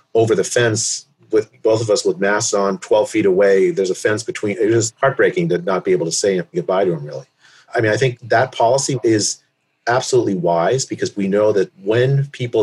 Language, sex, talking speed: English, male, 215 wpm